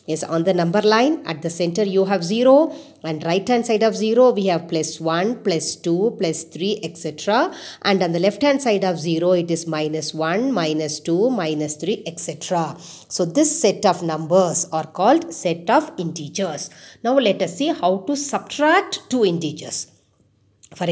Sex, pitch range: female, 165-230 Hz